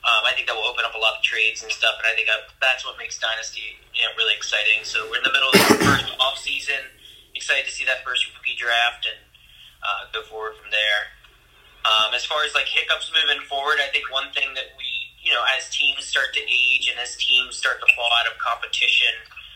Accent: American